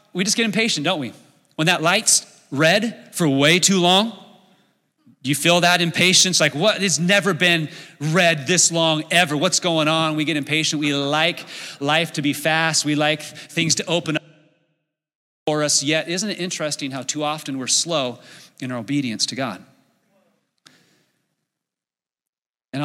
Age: 30-49